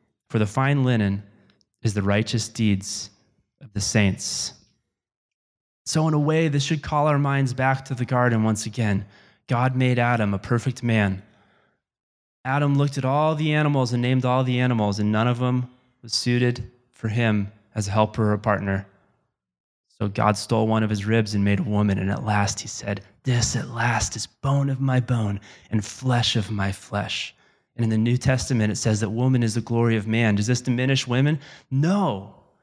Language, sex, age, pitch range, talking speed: English, male, 20-39, 105-135 Hz, 195 wpm